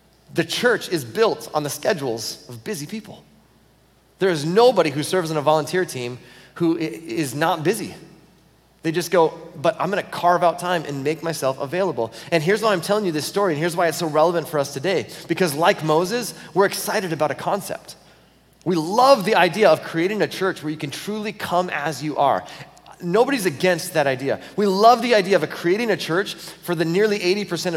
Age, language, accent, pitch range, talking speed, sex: 30-49, English, American, 155-195 Hz, 200 wpm, male